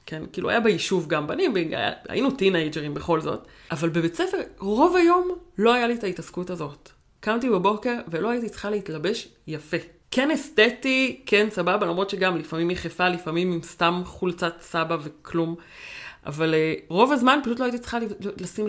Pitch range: 170-245 Hz